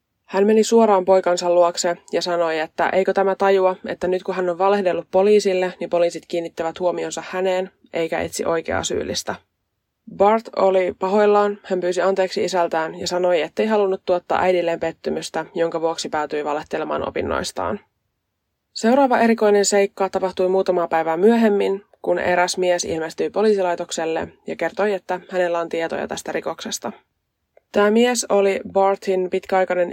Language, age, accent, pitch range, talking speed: Finnish, 20-39, native, 165-200 Hz, 140 wpm